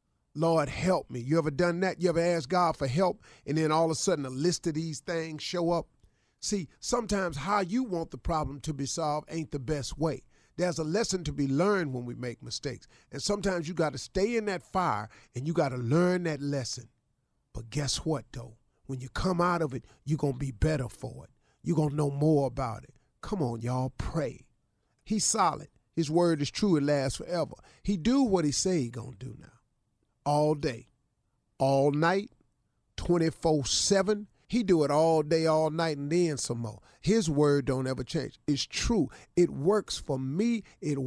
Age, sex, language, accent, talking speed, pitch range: 40-59, male, English, American, 205 wpm, 135-190 Hz